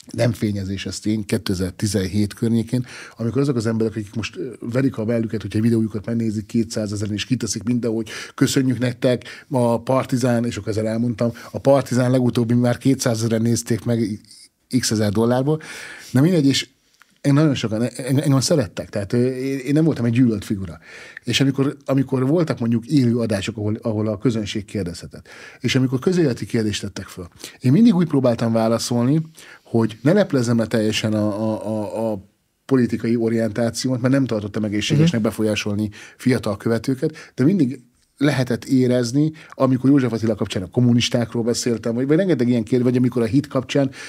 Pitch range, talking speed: 110-130 Hz, 160 wpm